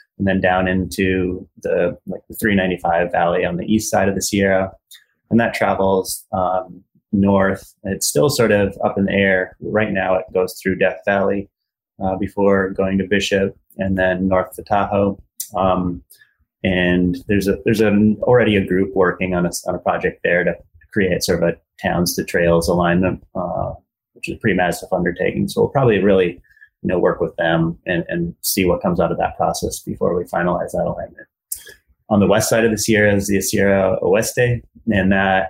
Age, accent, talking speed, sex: 30-49, American, 195 wpm, male